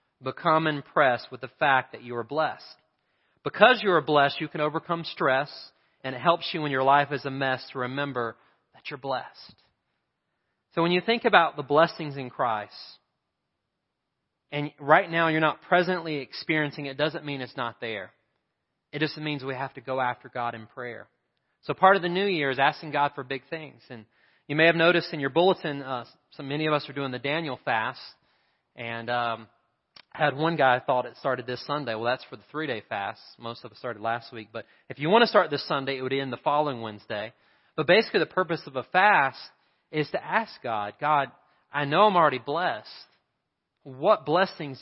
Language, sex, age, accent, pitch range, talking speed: English, male, 30-49, American, 125-155 Hz, 200 wpm